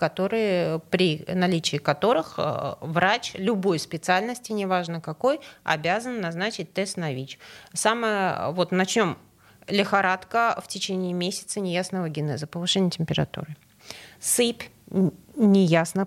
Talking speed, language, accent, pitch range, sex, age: 90 wpm, Russian, native, 155-195 Hz, female, 30-49